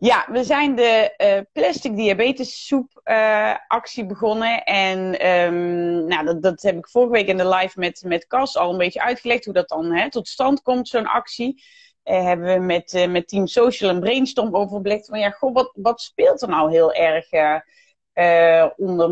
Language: Dutch